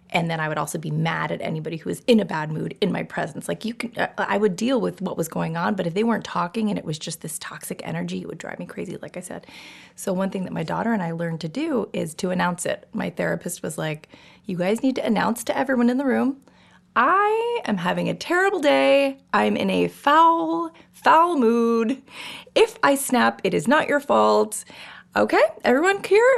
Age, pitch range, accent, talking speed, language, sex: 20-39, 170-260 Hz, American, 230 wpm, English, female